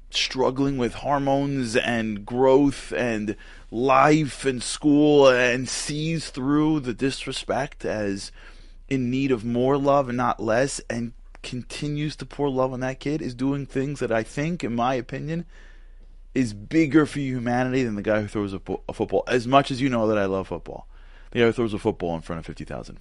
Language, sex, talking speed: English, male, 185 wpm